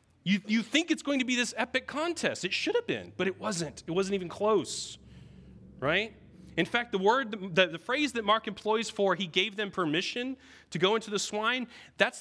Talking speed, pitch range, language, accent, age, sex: 210 wpm, 140-205 Hz, English, American, 30-49, male